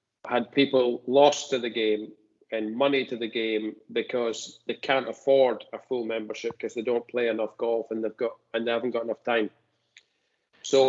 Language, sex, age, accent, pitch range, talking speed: English, male, 40-59, British, 115-140 Hz, 185 wpm